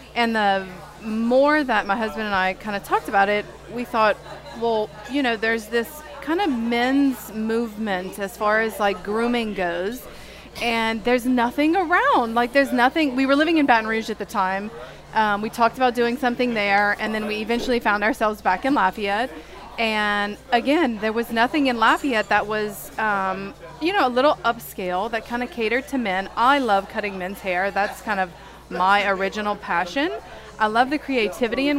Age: 30-49